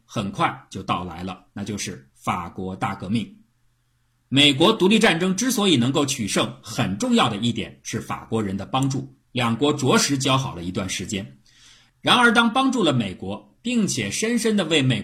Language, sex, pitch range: Chinese, male, 115-170 Hz